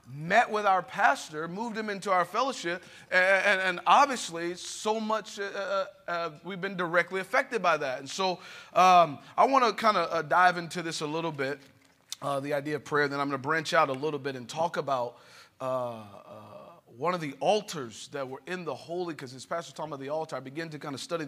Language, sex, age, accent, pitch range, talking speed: English, male, 30-49, American, 135-170 Hz, 225 wpm